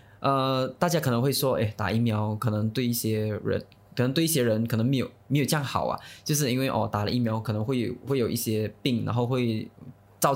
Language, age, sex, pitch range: Chinese, 20-39, male, 105-130 Hz